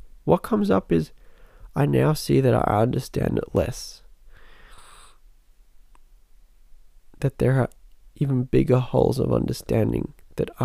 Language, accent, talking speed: English, American, 120 wpm